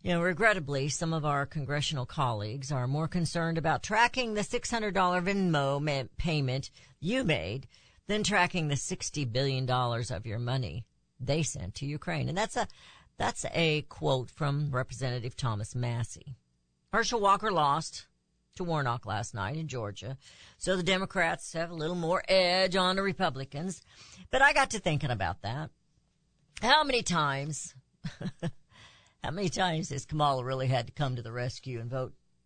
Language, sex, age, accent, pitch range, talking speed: English, female, 50-69, American, 125-175 Hz, 155 wpm